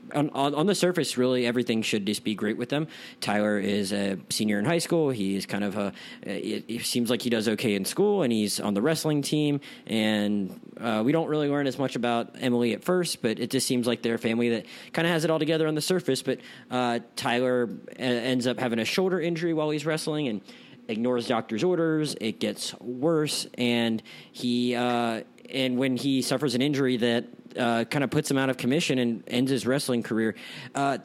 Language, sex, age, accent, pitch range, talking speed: English, male, 30-49, American, 110-135 Hz, 215 wpm